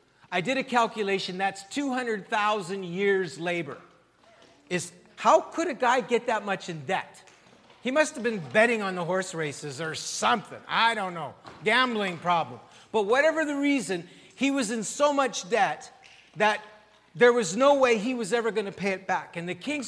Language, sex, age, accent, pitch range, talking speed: English, male, 40-59, American, 180-245 Hz, 180 wpm